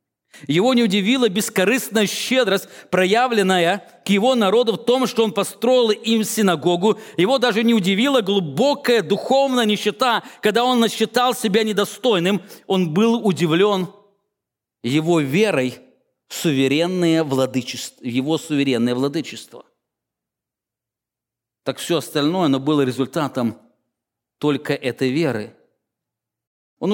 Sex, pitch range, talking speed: male, 125-195 Hz, 110 wpm